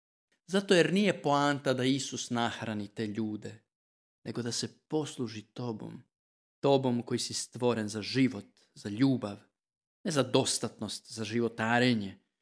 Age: 40-59